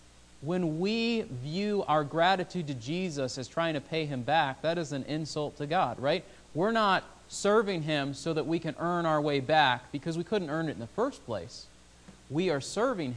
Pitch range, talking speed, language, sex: 125-170 Hz, 200 wpm, English, male